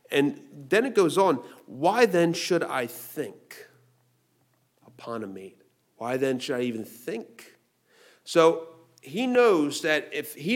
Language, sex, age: English, male, 40-59